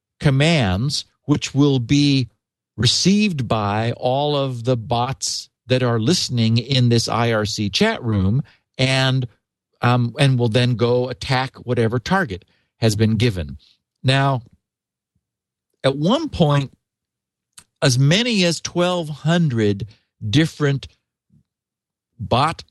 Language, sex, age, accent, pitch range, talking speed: English, male, 50-69, American, 110-160 Hz, 105 wpm